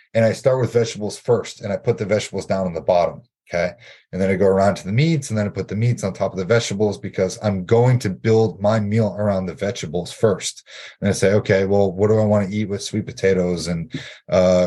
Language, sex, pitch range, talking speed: English, male, 95-110 Hz, 255 wpm